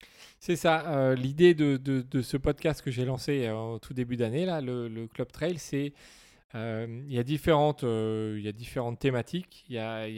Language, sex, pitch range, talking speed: French, male, 110-150 Hz, 195 wpm